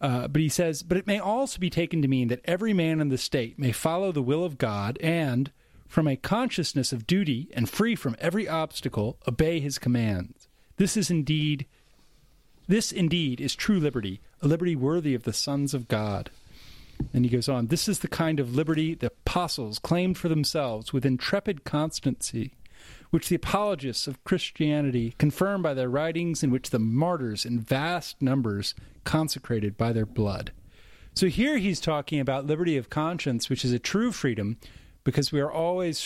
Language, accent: English, American